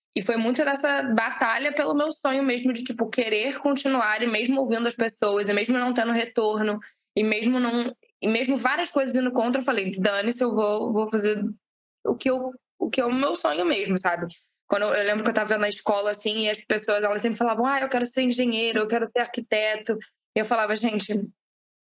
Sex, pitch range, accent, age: female, 200-240 Hz, Brazilian, 10-29